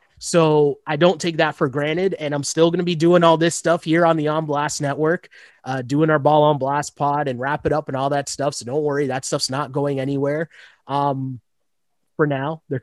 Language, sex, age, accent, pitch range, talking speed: English, male, 20-39, American, 140-165 Hz, 235 wpm